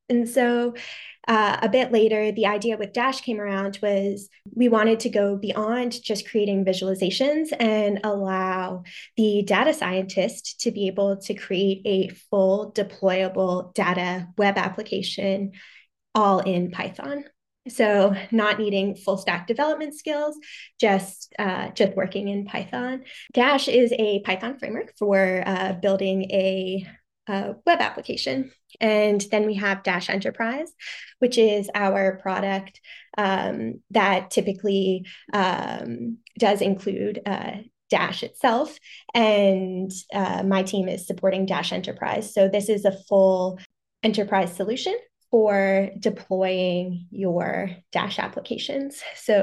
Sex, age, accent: female, 20-39, American